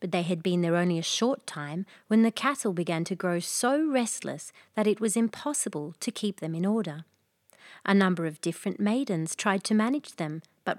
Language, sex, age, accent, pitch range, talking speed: English, female, 30-49, Australian, 175-230 Hz, 200 wpm